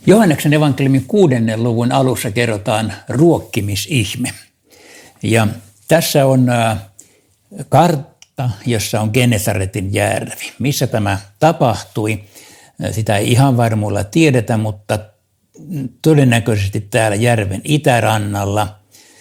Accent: native